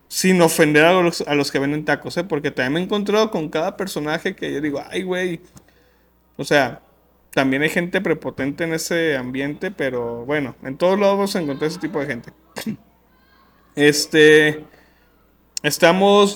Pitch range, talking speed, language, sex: 140-170 Hz, 165 wpm, Spanish, male